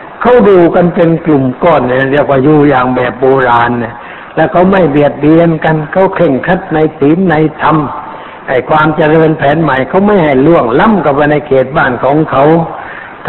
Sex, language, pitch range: male, Thai, 135-165 Hz